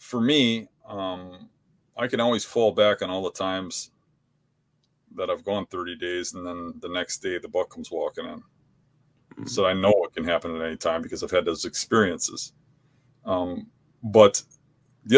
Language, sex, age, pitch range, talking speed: English, male, 30-49, 100-140 Hz, 175 wpm